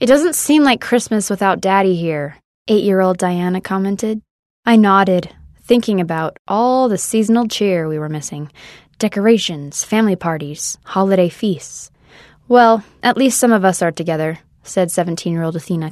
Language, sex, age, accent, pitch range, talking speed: English, female, 10-29, American, 175-225 Hz, 150 wpm